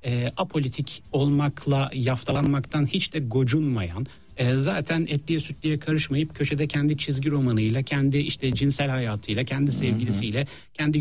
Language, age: Turkish, 60-79